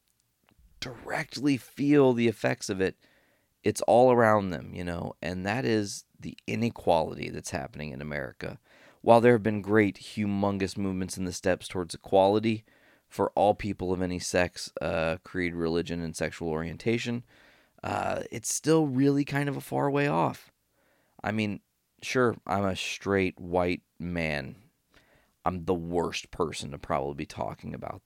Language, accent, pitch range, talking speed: English, American, 85-115 Hz, 155 wpm